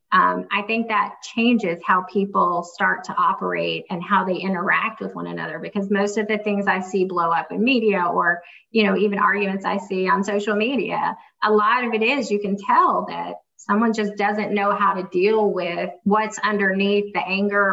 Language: English